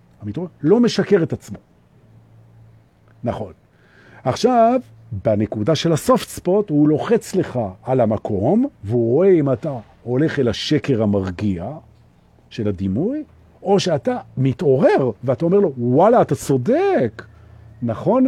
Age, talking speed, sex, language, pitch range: 50-69, 120 wpm, male, Hebrew, 110-155 Hz